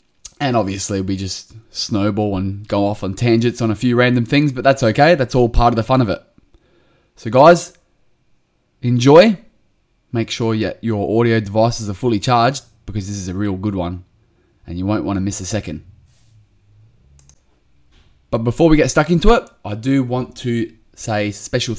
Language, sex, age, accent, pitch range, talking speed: English, male, 20-39, Australian, 100-125 Hz, 180 wpm